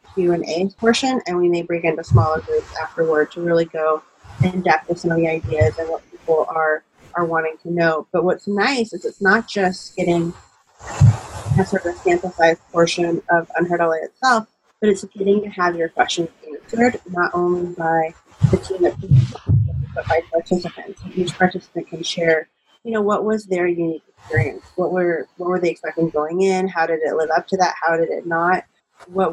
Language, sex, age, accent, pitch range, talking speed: English, female, 30-49, American, 165-185 Hz, 195 wpm